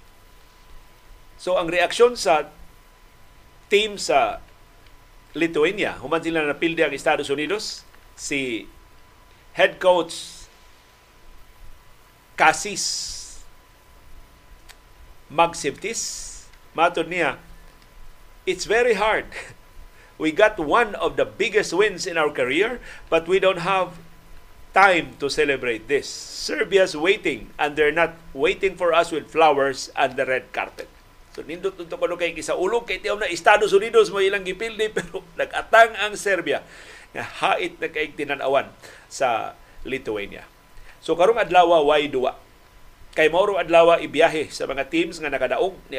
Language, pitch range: Filipino, 150-200 Hz